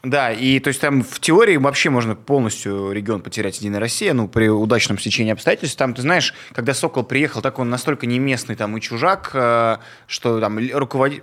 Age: 20-39